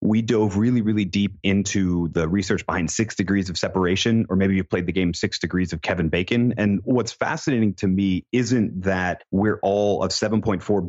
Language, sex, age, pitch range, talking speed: English, male, 30-49, 90-105 Hz, 200 wpm